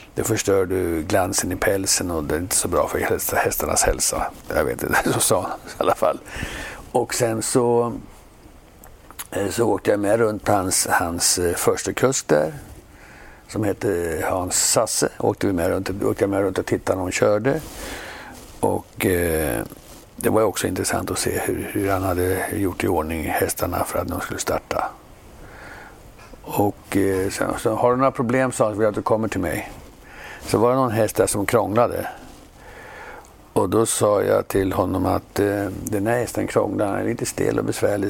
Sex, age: male, 60-79